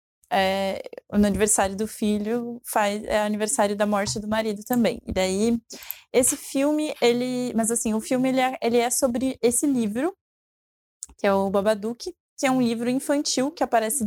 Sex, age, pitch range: female, 20-39, 210-245 Hz